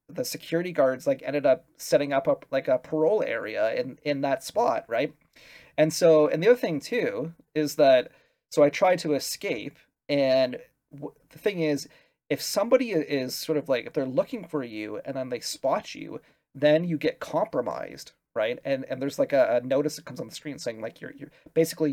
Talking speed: 205 wpm